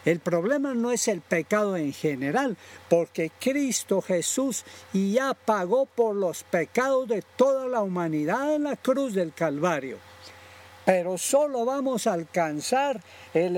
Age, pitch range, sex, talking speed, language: 60-79, 165-250 Hz, male, 135 wpm, Spanish